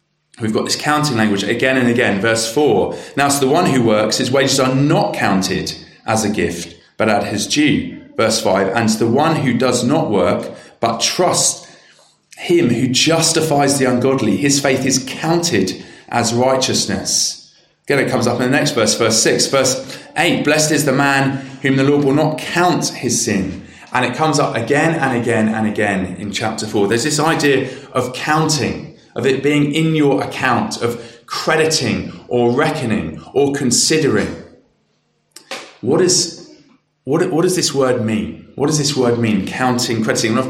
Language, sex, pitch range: English, male, 115-145 Hz